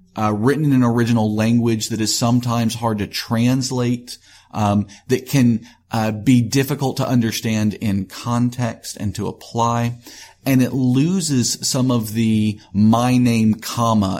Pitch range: 105-120 Hz